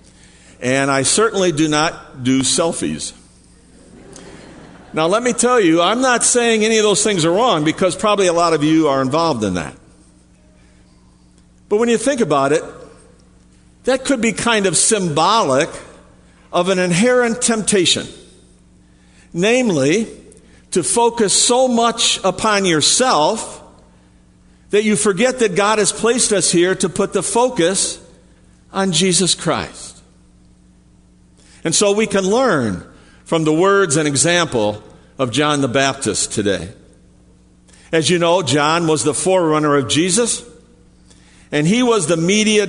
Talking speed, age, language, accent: 140 wpm, 50-69, English, American